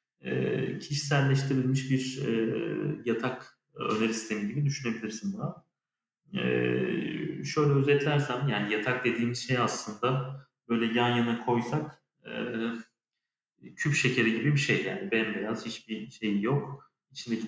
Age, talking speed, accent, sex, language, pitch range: 40-59, 105 wpm, native, male, Turkish, 115-140 Hz